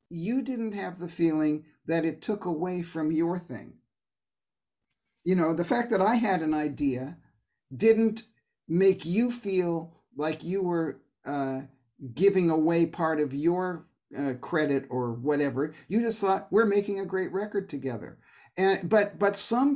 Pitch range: 145-190 Hz